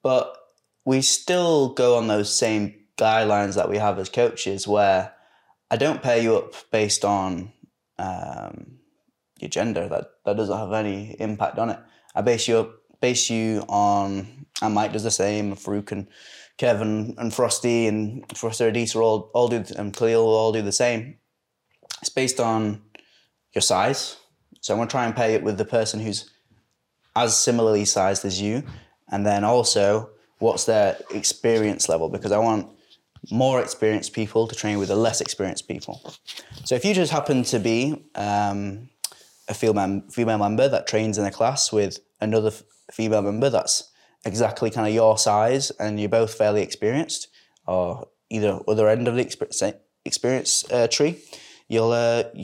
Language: English